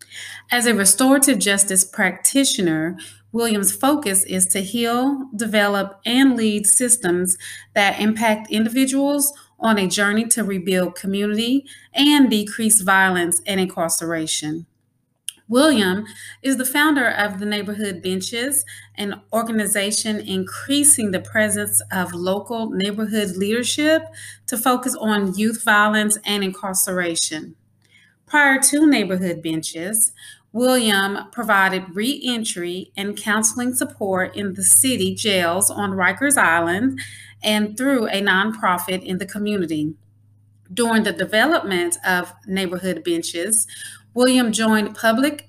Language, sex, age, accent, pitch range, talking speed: English, female, 30-49, American, 185-230 Hz, 110 wpm